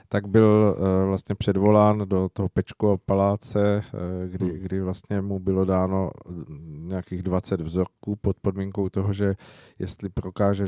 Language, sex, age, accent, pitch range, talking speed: Czech, male, 50-69, native, 90-105 Hz, 130 wpm